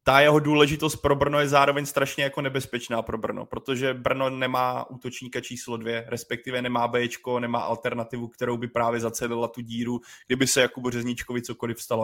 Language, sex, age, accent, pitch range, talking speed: Czech, male, 20-39, native, 120-140 Hz, 175 wpm